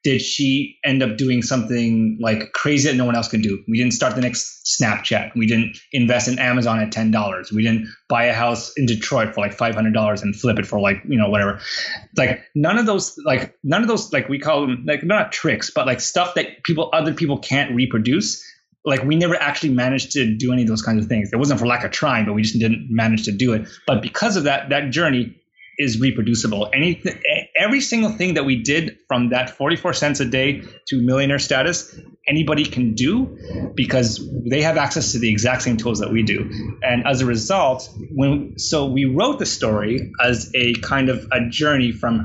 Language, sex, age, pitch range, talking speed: English, male, 20-39, 110-140 Hz, 215 wpm